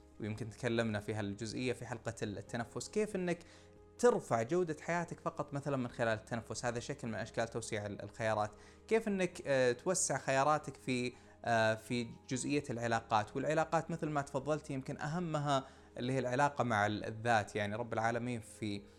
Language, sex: Arabic, male